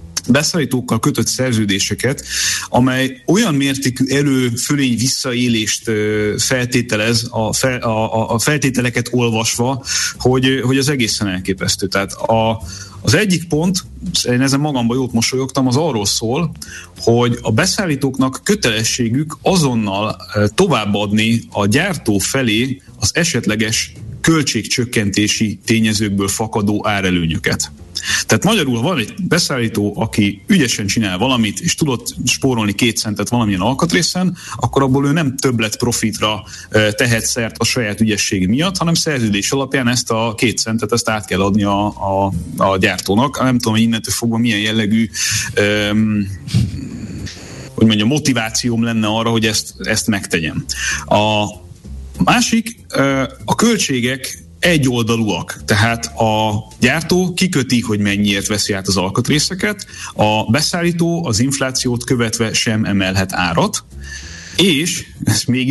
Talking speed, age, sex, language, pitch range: 120 wpm, 30-49, male, Hungarian, 105-135 Hz